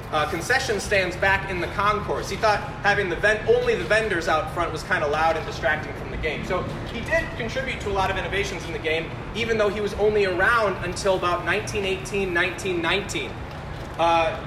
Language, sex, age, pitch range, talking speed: English, male, 30-49, 160-205 Hz, 200 wpm